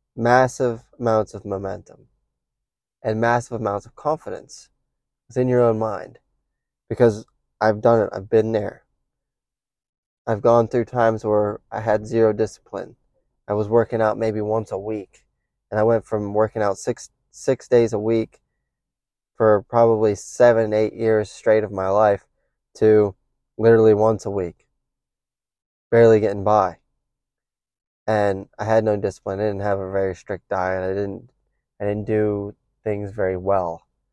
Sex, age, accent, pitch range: male, 20-39, American, 100-120 Hz